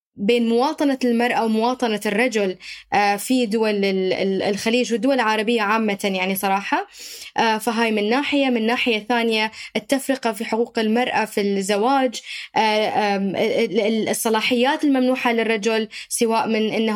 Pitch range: 215-245 Hz